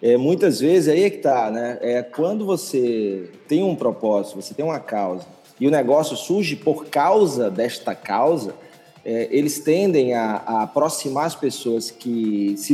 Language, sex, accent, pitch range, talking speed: Portuguese, male, Brazilian, 135-170 Hz, 170 wpm